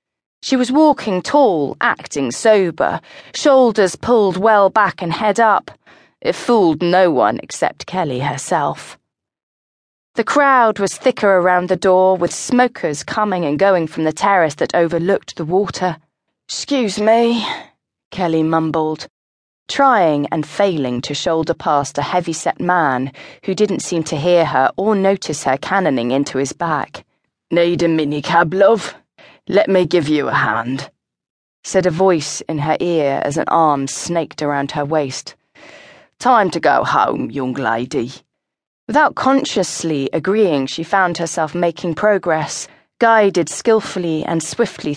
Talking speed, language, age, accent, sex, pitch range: 140 wpm, English, 30-49, British, female, 155-200 Hz